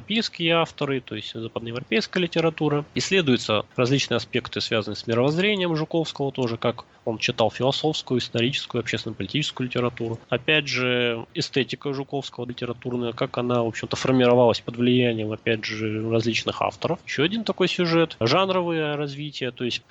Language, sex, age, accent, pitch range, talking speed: Russian, male, 20-39, native, 115-150 Hz, 135 wpm